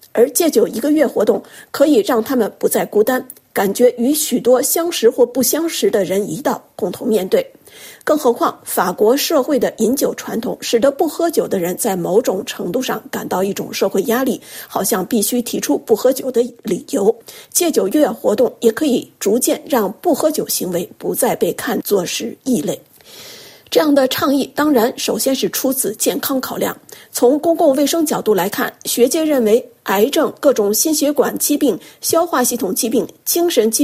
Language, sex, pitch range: Chinese, female, 225-310 Hz